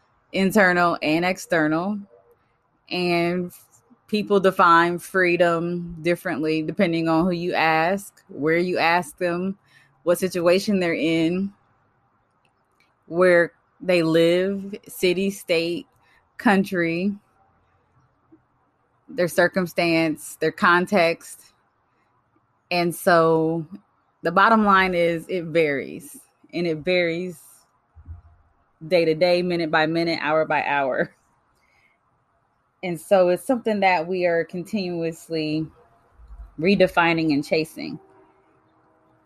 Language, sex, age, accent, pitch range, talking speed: English, female, 20-39, American, 155-190 Hz, 95 wpm